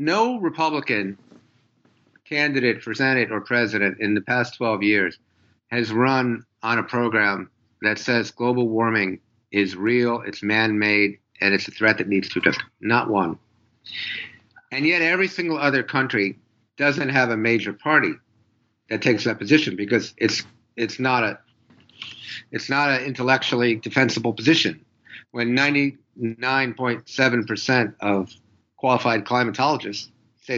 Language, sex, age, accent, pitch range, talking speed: English, male, 50-69, American, 110-140 Hz, 135 wpm